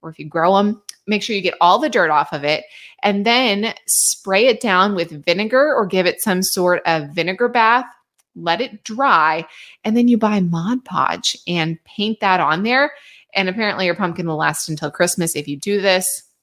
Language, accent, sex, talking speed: English, American, female, 200 wpm